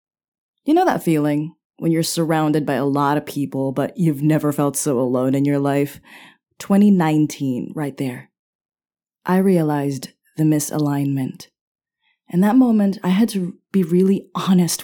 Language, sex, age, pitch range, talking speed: English, female, 20-39, 140-185 Hz, 150 wpm